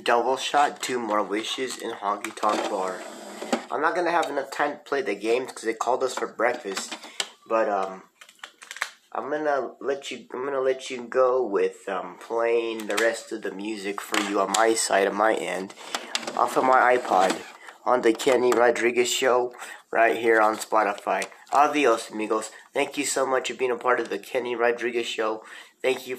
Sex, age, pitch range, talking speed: male, 30-49, 115-140 Hz, 190 wpm